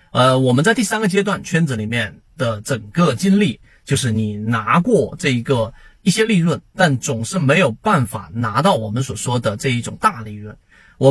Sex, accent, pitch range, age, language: male, native, 115-160 Hz, 30-49, Chinese